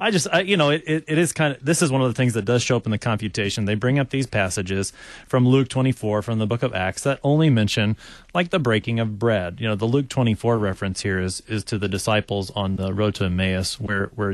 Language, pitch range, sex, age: English, 100-130 Hz, male, 30-49